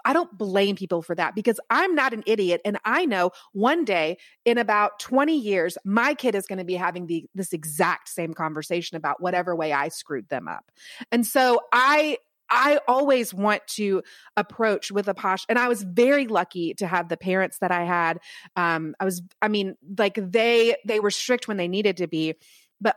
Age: 30-49